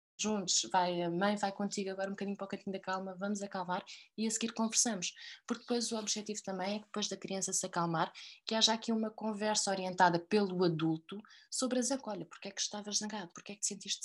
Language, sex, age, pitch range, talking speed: Portuguese, female, 20-39, 155-200 Hz, 235 wpm